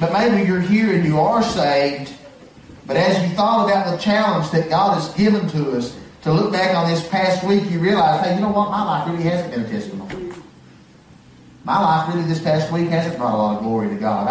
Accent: American